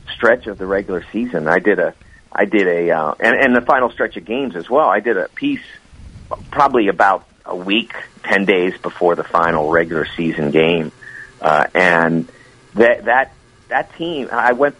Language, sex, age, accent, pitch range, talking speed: English, male, 50-69, American, 95-125 Hz, 185 wpm